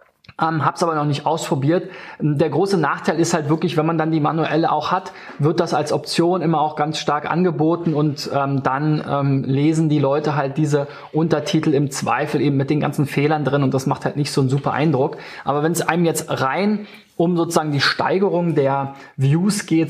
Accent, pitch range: German, 145-170 Hz